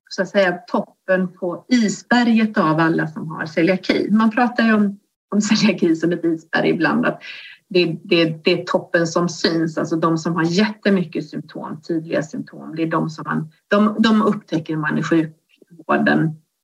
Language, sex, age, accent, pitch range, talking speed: Swedish, female, 30-49, native, 165-205 Hz, 165 wpm